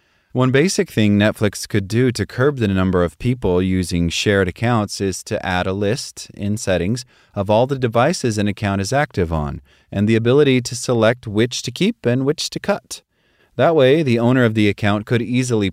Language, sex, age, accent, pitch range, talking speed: English, male, 30-49, American, 90-115 Hz, 200 wpm